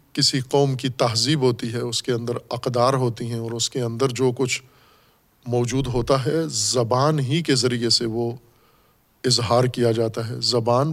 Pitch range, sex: 120-145 Hz, male